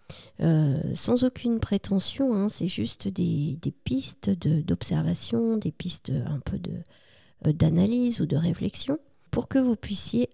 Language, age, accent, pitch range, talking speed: French, 40-59, French, 155-200 Hz, 145 wpm